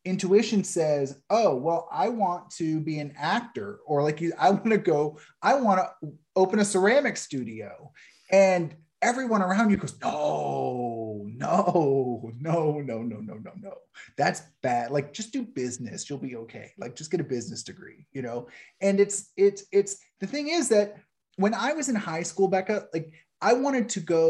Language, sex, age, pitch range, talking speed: English, male, 30-49, 140-195 Hz, 180 wpm